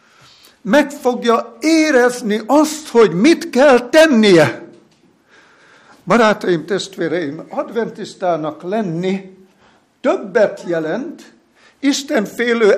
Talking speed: 75 wpm